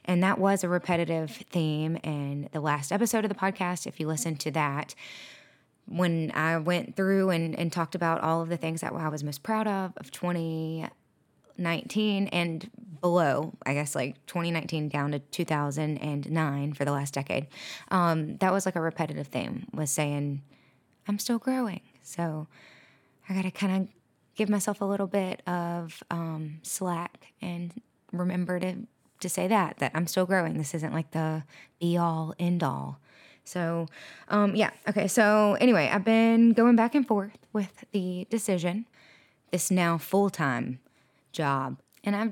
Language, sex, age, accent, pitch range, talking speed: English, female, 20-39, American, 155-200 Hz, 165 wpm